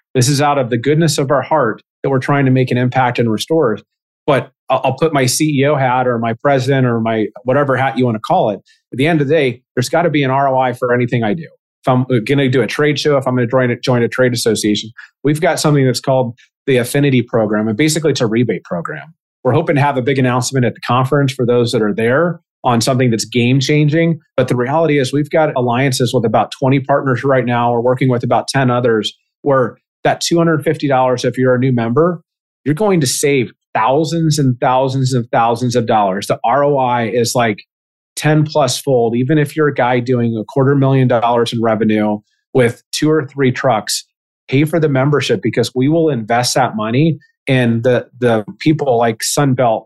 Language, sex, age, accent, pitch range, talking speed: English, male, 30-49, American, 120-145 Hz, 215 wpm